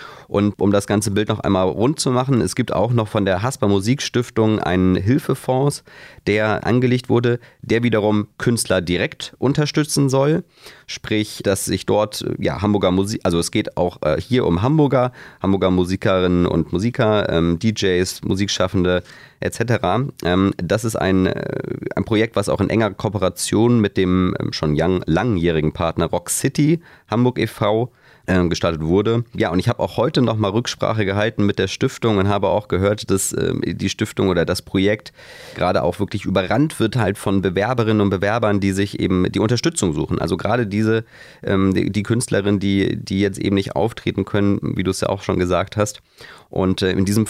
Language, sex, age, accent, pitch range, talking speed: German, male, 30-49, German, 95-115 Hz, 175 wpm